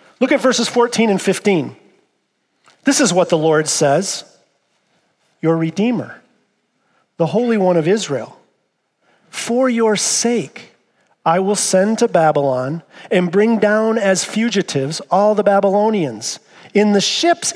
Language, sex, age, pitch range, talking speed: English, male, 40-59, 170-225 Hz, 130 wpm